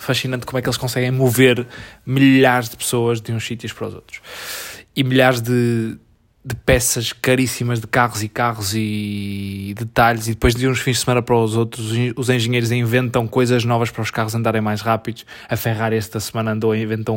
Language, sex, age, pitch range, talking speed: Portuguese, male, 20-39, 110-125 Hz, 195 wpm